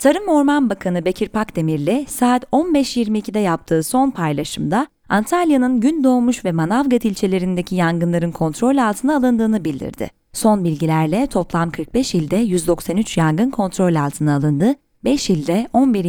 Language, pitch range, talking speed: Turkish, 165-245 Hz, 125 wpm